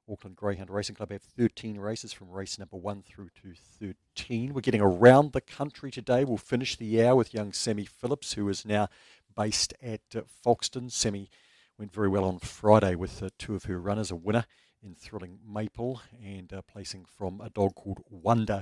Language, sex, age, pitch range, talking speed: English, male, 50-69, 100-120 Hz, 195 wpm